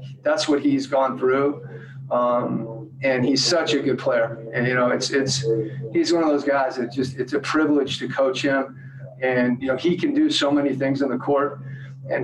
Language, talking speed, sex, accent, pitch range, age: English, 210 wpm, male, American, 125-140 Hz, 40-59